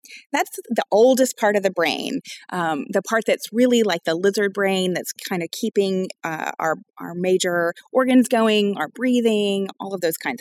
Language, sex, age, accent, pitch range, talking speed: English, female, 30-49, American, 200-265 Hz, 185 wpm